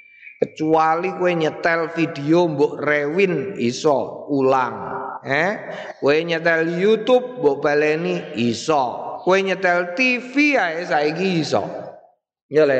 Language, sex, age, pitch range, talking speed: Indonesian, male, 30-49, 155-250 Hz, 115 wpm